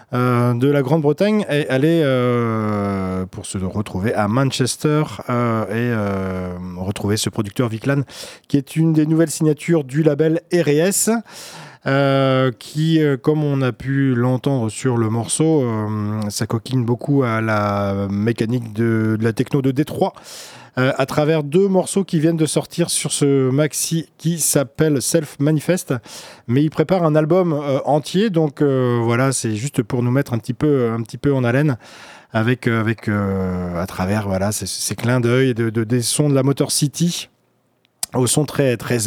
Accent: French